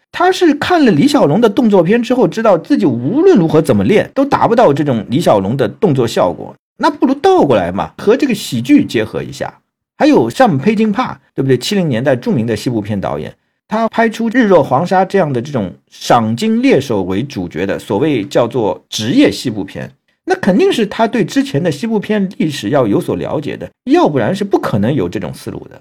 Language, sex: Chinese, male